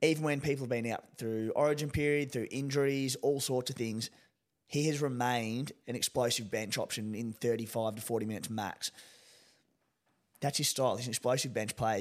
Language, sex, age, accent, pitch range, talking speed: English, male, 20-39, Australian, 120-140 Hz, 180 wpm